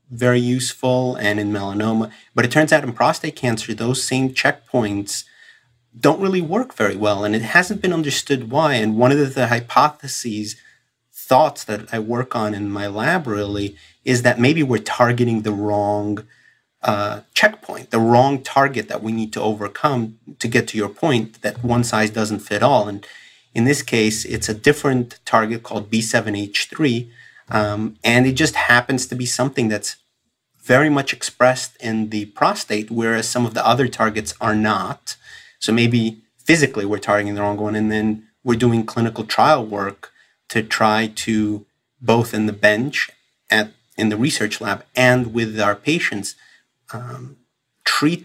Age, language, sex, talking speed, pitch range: 30-49, English, male, 170 wpm, 110-125 Hz